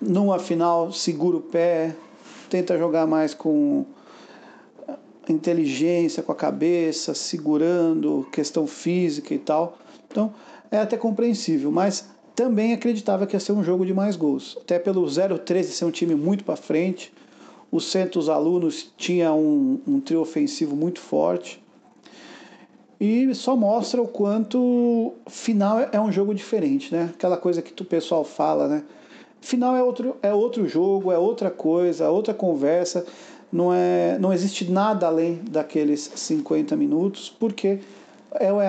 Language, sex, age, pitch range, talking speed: Portuguese, male, 50-69, 165-220 Hz, 145 wpm